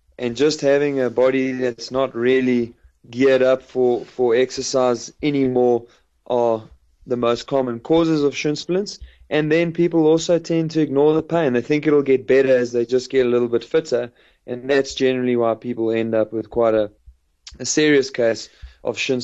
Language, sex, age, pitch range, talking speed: English, male, 20-39, 115-135 Hz, 185 wpm